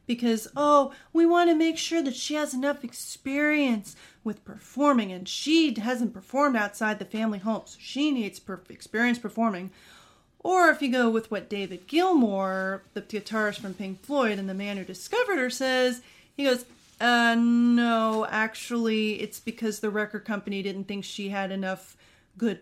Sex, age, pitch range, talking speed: female, 30-49, 205-250 Hz, 170 wpm